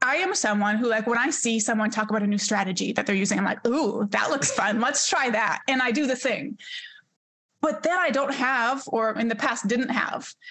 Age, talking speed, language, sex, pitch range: 20-39, 240 wpm, English, female, 215-270 Hz